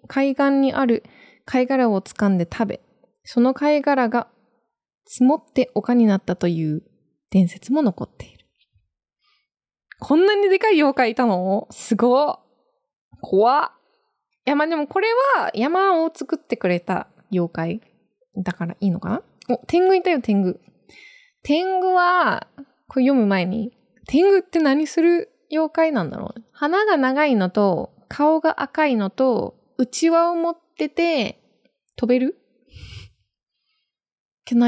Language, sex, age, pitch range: Japanese, female, 20-39, 205-305 Hz